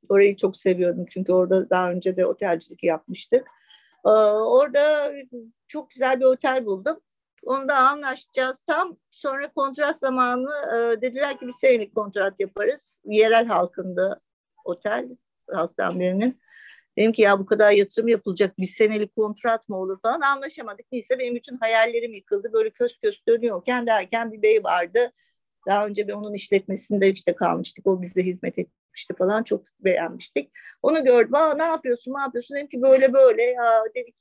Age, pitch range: 50-69, 205-275 Hz